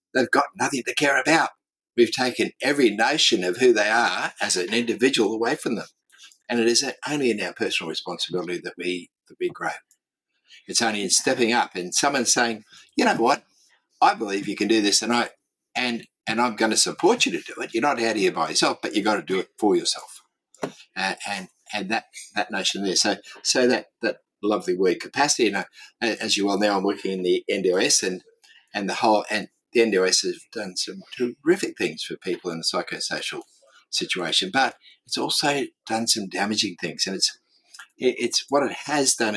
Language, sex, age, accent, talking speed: English, male, 60-79, Australian, 205 wpm